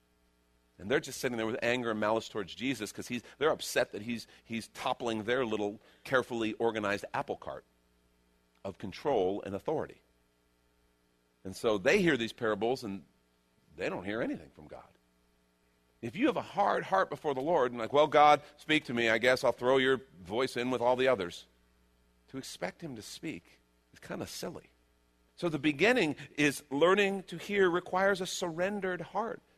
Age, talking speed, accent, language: 50-69, 180 wpm, American, English